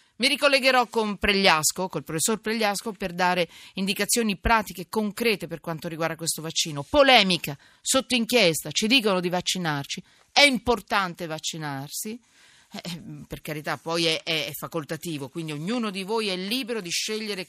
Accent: native